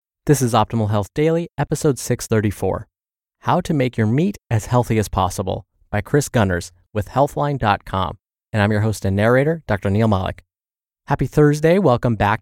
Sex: male